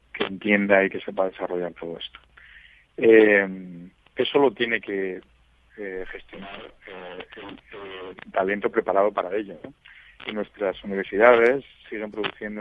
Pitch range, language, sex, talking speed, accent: 95-105 Hz, Spanish, male, 135 wpm, Spanish